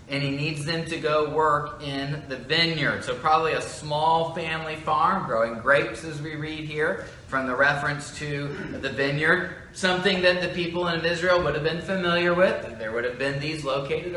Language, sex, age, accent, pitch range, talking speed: English, male, 30-49, American, 135-165 Hz, 195 wpm